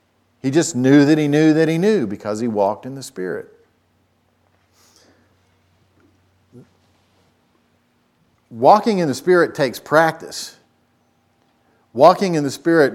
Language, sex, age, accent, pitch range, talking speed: English, male, 50-69, American, 110-135 Hz, 115 wpm